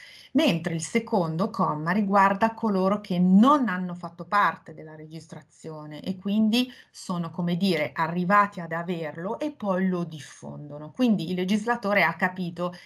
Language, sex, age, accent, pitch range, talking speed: Italian, female, 30-49, native, 165-205 Hz, 140 wpm